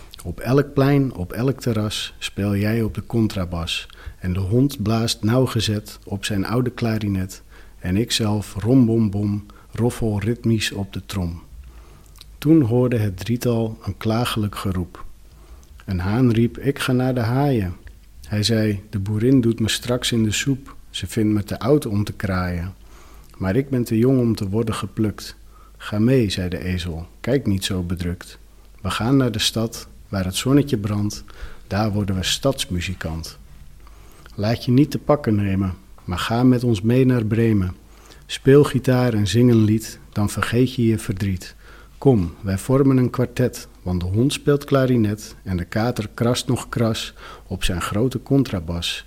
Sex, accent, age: male, Dutch, 50-69